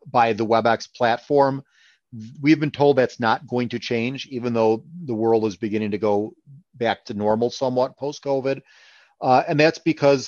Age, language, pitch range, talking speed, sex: 40-59, English, 110-130 Hz, 165 wpm, male